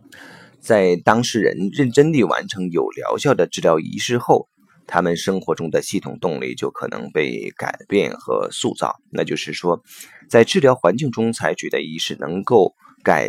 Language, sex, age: Chinese, male, 30-49